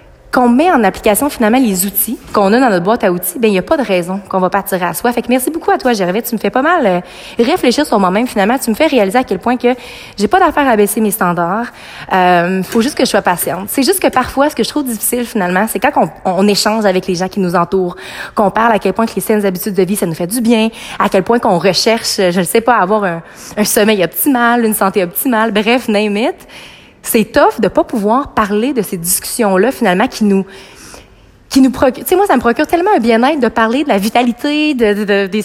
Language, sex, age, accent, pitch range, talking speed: French, female, 30-49, Canadian, 195-255 Hz, 265 wpm